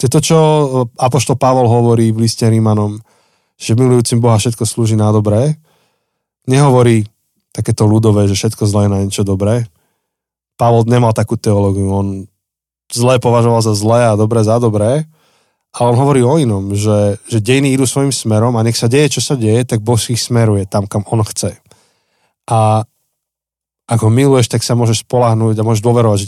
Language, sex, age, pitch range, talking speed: Slovak, male, 20-39, 105-125 Hz, 170 wpm